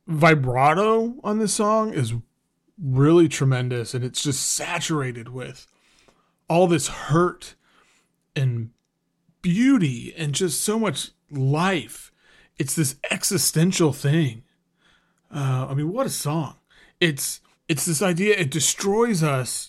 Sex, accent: male, American